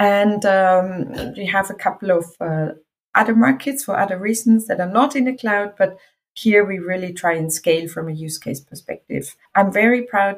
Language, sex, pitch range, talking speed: German, female, 170-205 Hz, 195 wpm